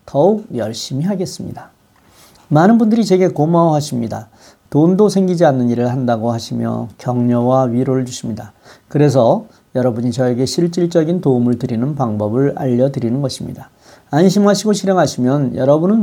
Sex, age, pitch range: male, 40-59, 125-185 Hz